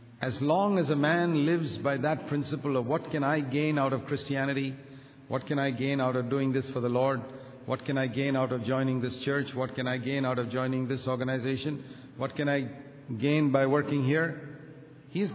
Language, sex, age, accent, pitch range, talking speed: English, male, 50-69, Indian, 130-165 Hz, 210 wpm